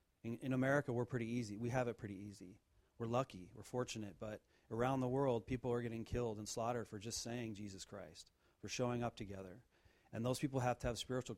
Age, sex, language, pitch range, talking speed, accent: 40-59, male, English, 105-125 Hz, 215 wpm, American